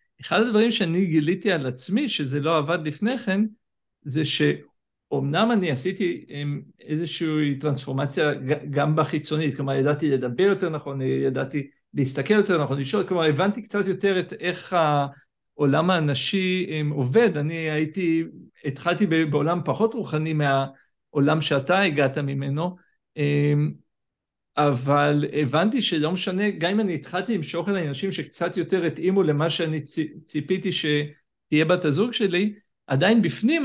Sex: male